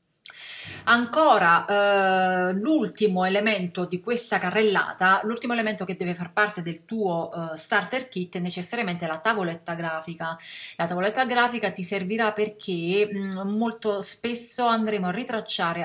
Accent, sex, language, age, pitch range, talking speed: native, female, Italian, 30-49, 165-200 Hz, 120 wpm